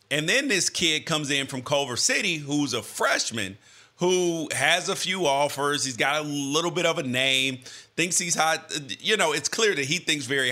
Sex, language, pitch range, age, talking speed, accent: male, English, 120-165 Hz, 30-49, 205 wpm, American